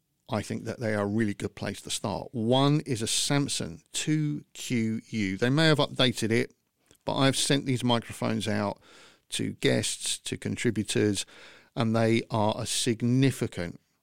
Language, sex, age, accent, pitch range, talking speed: English, male, 50-69, British, 100-125 Hz, 155 wpm